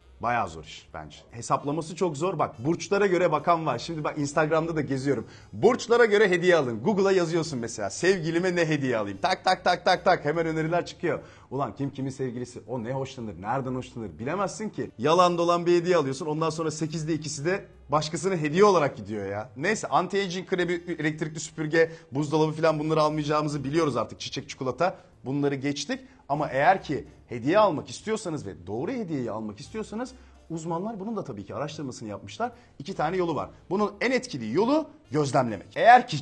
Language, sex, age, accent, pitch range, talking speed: Turkish, male, 40-59, native, 130-185 Hz, 175 wpm